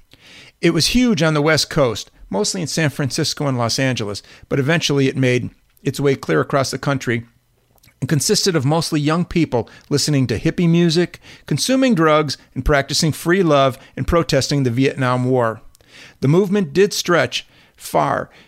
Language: English